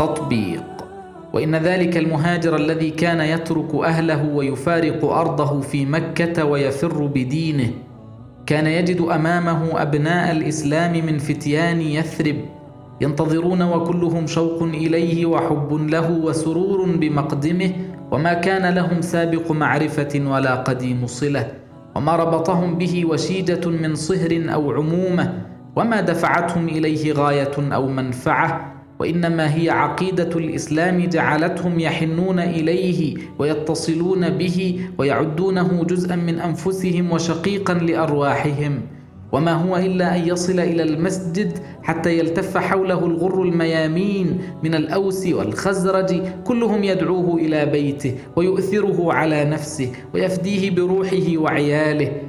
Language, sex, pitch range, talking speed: Arabic, male, 150-180 Hz, 105 wpm